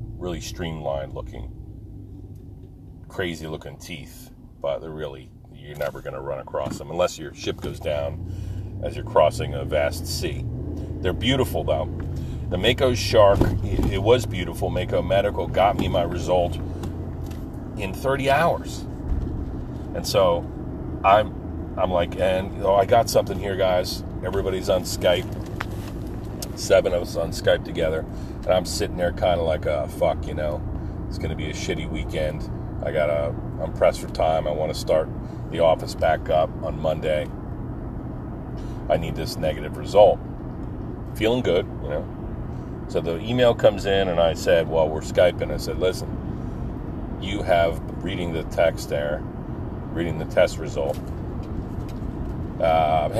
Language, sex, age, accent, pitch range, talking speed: English, male, 40-59, American, 80-100 Hz, 150 wpm